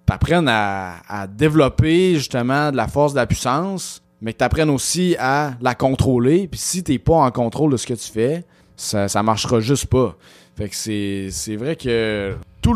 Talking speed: 195 wpm